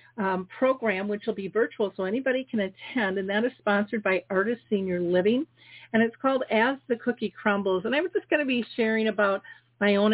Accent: American